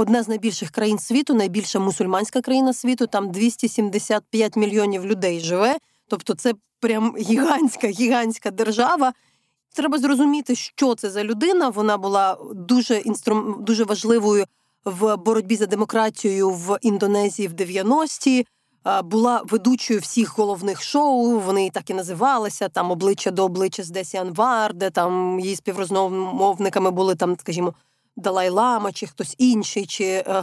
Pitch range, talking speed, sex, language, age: 195-245 Hz, 135 wpm, female, Ukrainian, 20-39